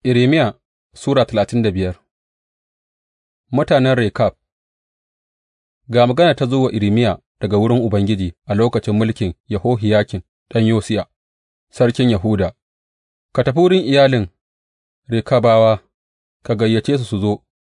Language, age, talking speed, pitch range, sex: English, 30-49, 110 wpm, 90-120 Hz, male